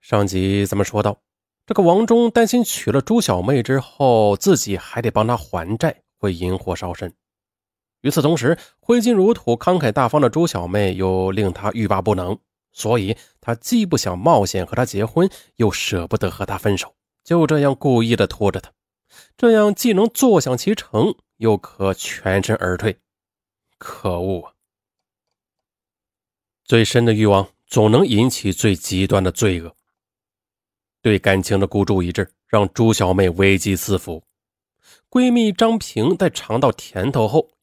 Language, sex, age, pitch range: Chinese, male, 20-39, 95-155 Hz